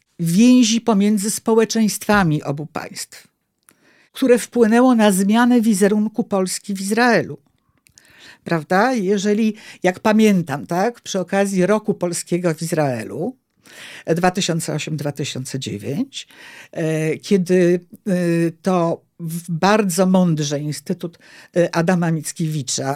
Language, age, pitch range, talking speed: Polish, 50-69, 160-220 Hz, 85 wpm